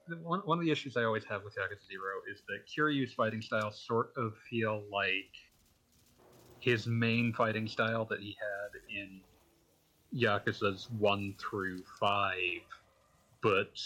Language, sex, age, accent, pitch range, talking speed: English, male, 30-49, American, 100-120 Hz, 140 wpm